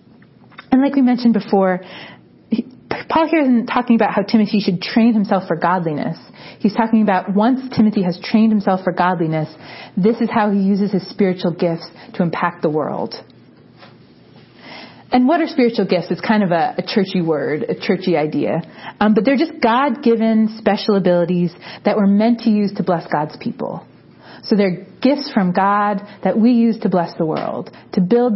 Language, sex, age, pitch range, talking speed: English, female, 30-49, 185-235 Hz, 180 wpm